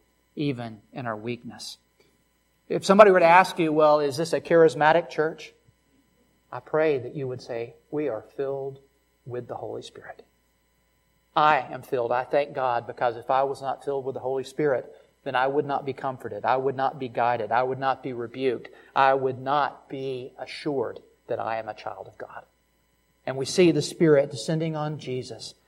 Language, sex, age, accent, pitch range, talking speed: English, male, 40-59, American, 130-180 Hz, 190 wpm